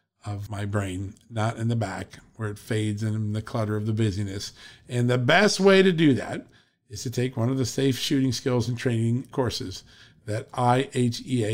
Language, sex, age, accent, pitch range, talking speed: English, male, 50-69, American, 115-155 Hz, 190 wpm